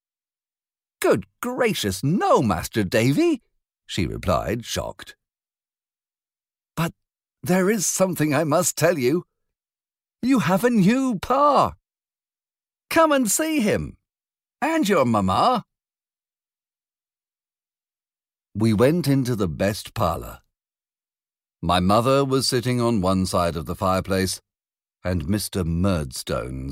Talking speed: 105 wpm